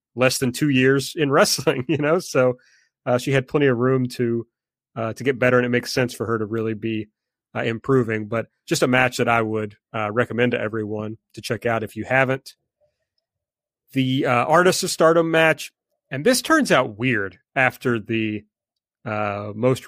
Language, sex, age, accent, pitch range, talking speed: English, male, 30-49, American, 115-135 Hz, 190 wpm